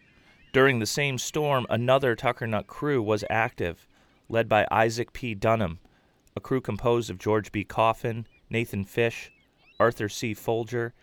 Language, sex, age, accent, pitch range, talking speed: English, male, 30-49, American, 100-125 Hz, 140 wpm